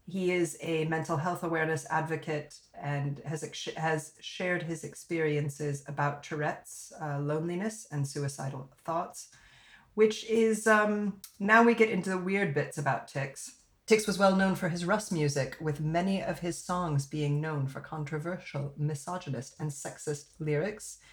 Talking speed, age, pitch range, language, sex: 150 wpm, 40-59, 145-185 Hz, English, female